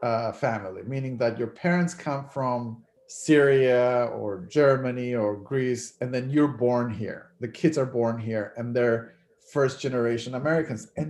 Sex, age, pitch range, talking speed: male, 40-59, 125-165 Hz, 150 wpm